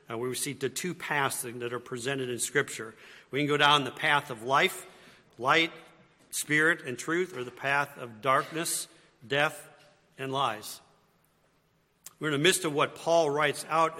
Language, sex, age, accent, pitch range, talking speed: English, male, 50-69, American, 125-150 Hz, 170 wpm